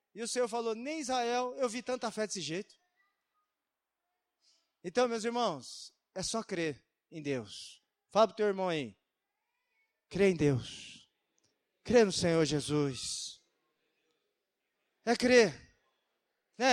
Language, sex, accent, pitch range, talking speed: Portuguese, male, Brazilian, 180-260 Hz, 130 wpm